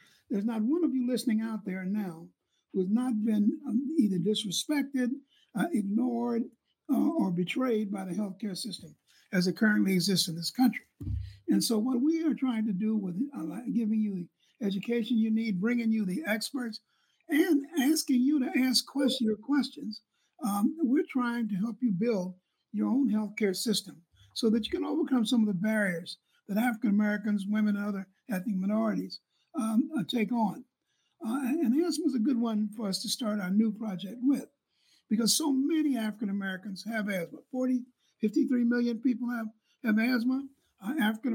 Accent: American